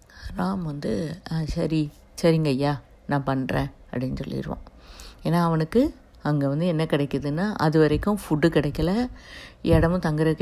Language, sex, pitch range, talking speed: Tamil, female, 145-180 Hz, 120 wpm